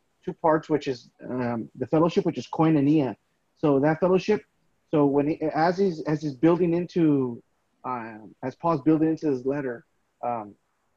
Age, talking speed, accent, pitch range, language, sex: 30-49, 165 wpm, American, 135-160 Hz, English, male